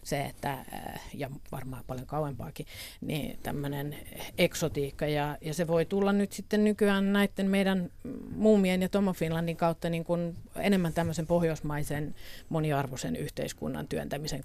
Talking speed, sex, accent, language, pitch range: 130 wpm, female, native, Finnish, 150-185 Hz